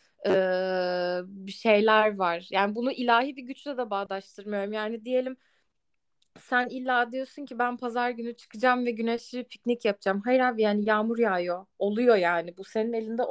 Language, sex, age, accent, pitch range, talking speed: Turkish, female, 20-39, native, 205-260 Hz, 155 wpm